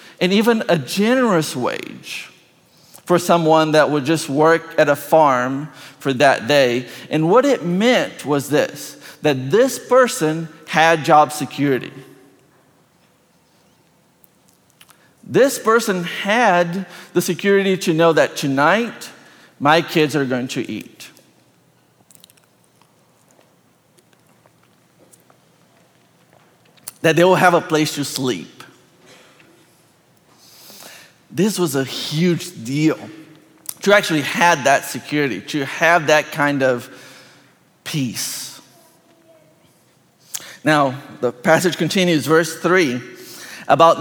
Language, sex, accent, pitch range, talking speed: English, male, American, 145-185 Hz, 100 wpm